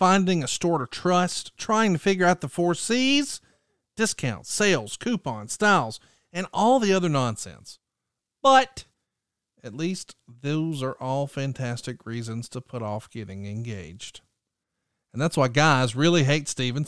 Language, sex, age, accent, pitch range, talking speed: English, male, 40-59, American, 130-185 Hz, 145 wpm